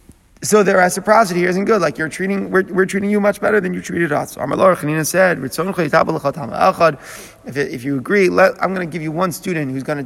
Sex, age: male, 30-49